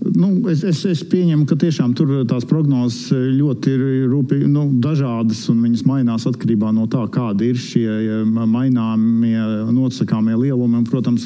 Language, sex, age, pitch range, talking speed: English, male, 50-69, 110-130 Hz, 140 wpm